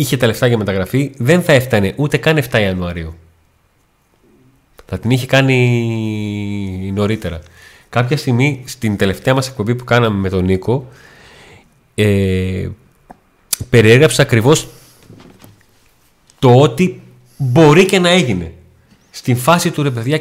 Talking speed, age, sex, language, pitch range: 125 wpm, 30-49, male, Greek, 110-140 Hz